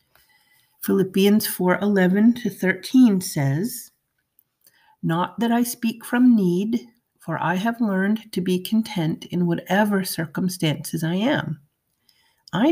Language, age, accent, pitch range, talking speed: English, 50-69, American, 155-205 Hz, 105 wpm